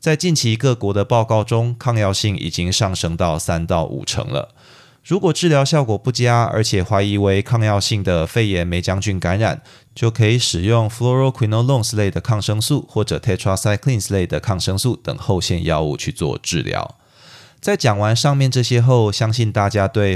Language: Chinese